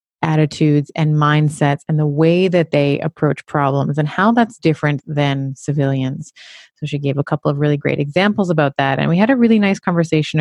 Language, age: English, 30-49